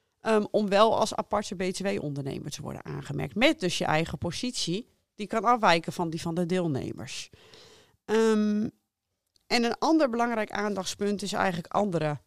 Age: 40-59